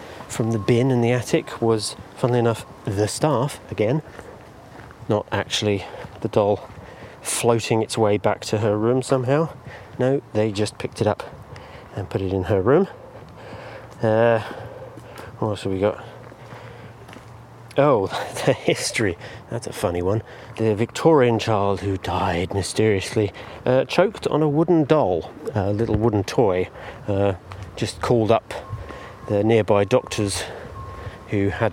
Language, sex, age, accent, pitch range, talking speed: English, male, 30-49, British, 100-120 Hz, 140 wpm